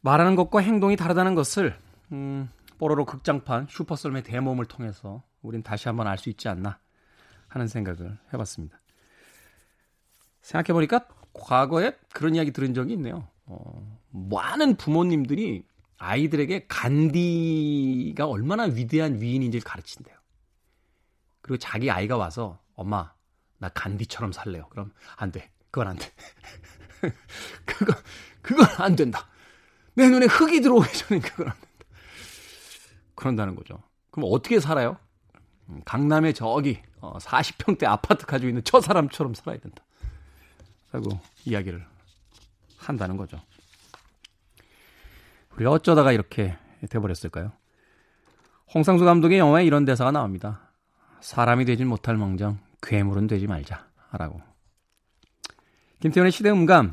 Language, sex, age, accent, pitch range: Korean, male, 30-49, native, 100-155 Hz